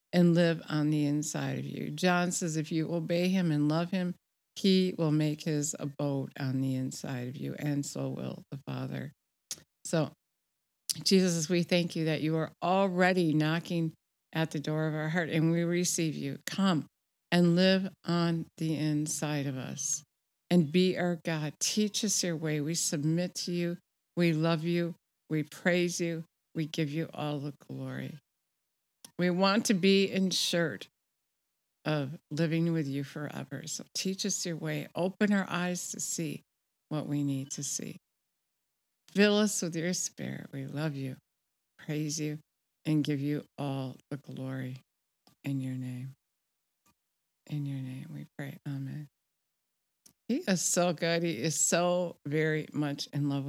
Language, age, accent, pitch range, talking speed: English, 60-79, American, 145-180 Hz, 160 wpm